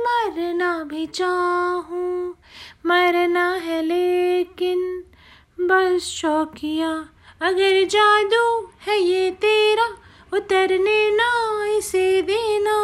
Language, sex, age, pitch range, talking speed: Hindi, female, 30-49, 315-385 Hz, 75 wpm